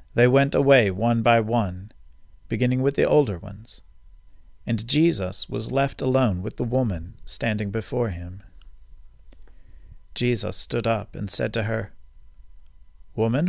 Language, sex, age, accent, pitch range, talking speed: English, male, 40-59, American, 85-130 Hz, 135 wpm